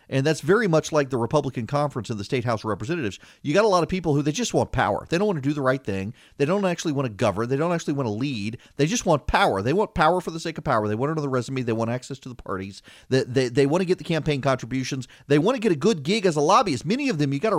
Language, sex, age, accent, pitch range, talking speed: English, male, 40-59, American, 130-190 Hz, 315 wpm